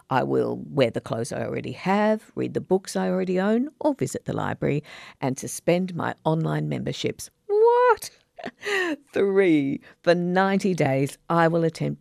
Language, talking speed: English, 155 wpm